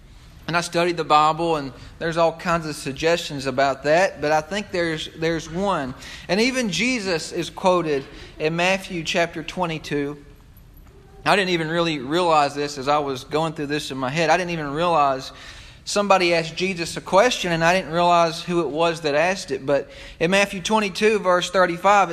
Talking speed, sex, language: 185 wpm, male, English